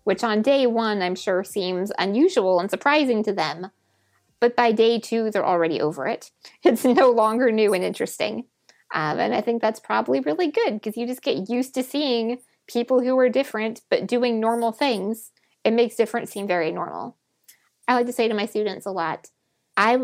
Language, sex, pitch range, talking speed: English, female, 195-255 Hz, 195 wpm